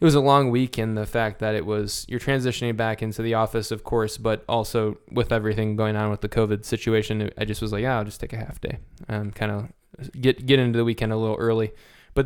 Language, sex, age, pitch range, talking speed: English, male, 10-29, 110-125 Hz, 255 wpm